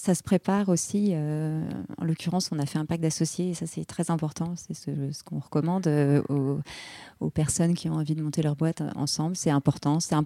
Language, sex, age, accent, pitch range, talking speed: French, female, 30-49, French, 150-180 Hz, 235 wpm